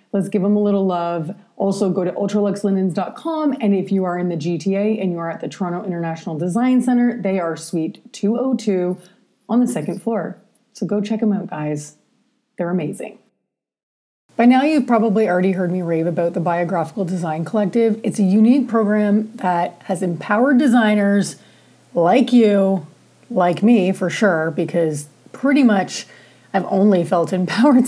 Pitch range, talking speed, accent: 180-230 Hz, 165 wpm, American